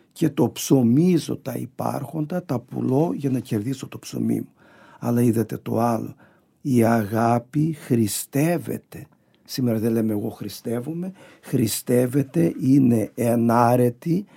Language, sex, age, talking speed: Greek, male, 50-69, 115 wpm